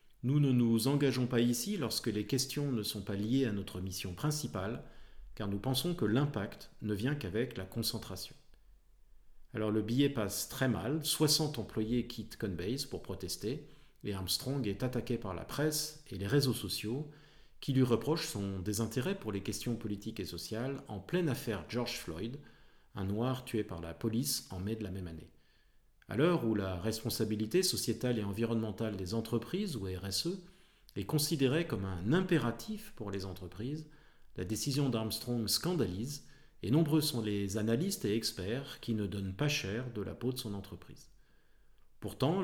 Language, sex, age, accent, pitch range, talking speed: French, male, 40-59, French, 105-140 Hz, 175 wpm